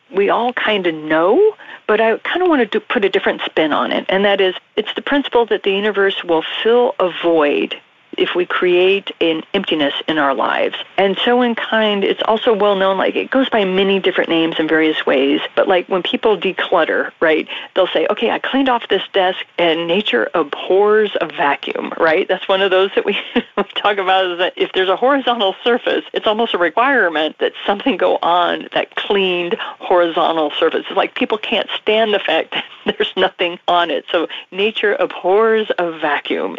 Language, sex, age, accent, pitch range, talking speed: English, female, 40-59, American, 175-230 Hz, 195 wpm